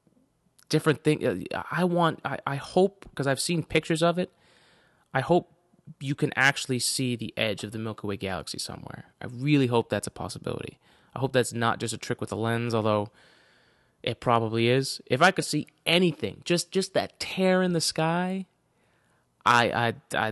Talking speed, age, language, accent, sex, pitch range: 180 wpm, 20-39, English, American, male, 110-150 Hz